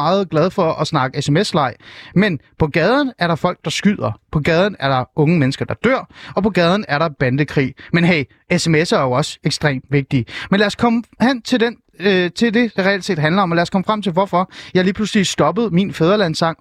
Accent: native